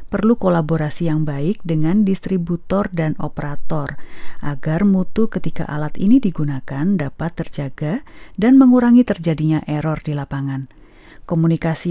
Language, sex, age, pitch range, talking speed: Indonesian, female, 30-49, 155-195 Hz, 115 wpm